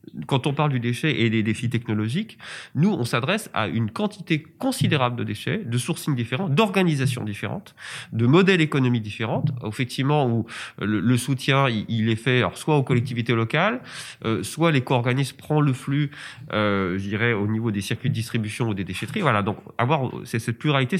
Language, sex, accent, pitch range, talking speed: French, male, French, 110-150 Hz, 190 wpm